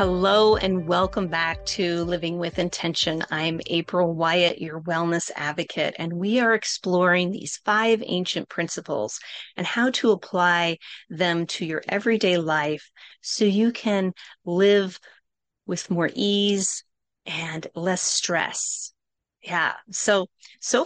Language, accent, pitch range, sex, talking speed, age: English, American, 170-205 Hz, female, 125 wpm, 30-49